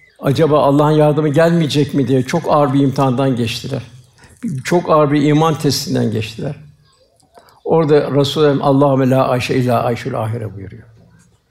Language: Turkish